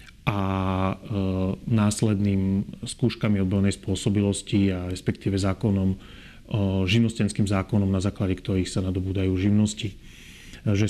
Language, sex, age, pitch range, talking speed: Slovak, male, 30-49, 100-110 Hz, 95 wpm